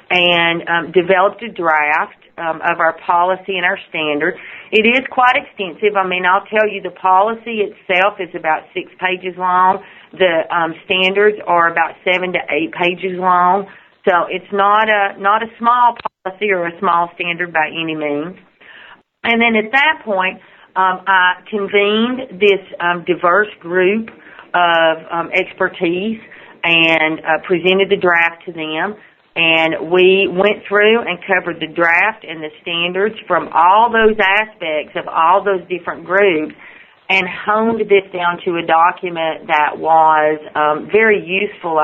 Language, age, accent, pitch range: English, 40-59, American, 165-200 Hz